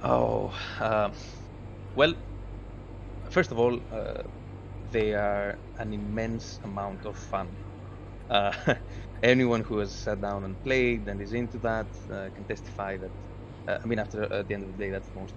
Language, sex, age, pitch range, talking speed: English, male, 20-39, 100-110 Hz, 170 wpm